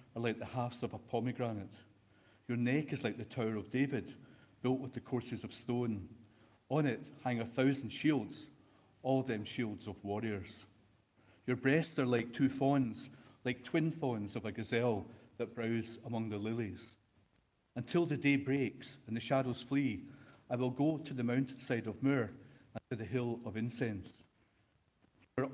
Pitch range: 110-130 Hz